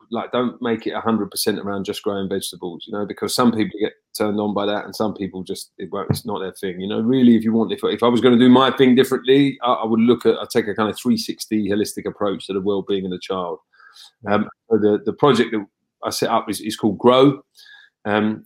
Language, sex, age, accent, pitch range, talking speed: English, male, 30-49, British, 105-120 Hz, 275 wpm